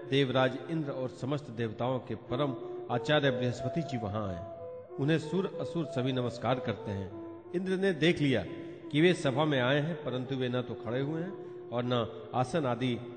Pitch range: 125-170 Hz